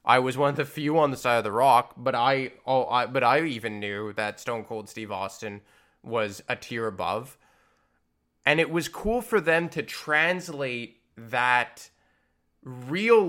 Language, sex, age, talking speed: English, male, 20-39, 170 wpm